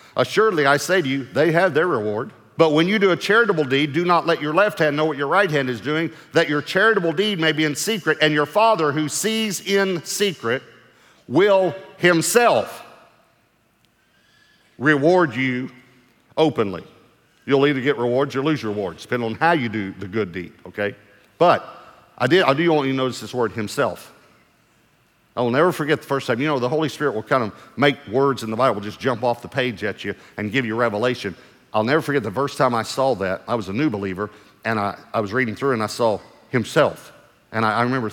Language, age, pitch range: English, 50-69, 110-160 Hz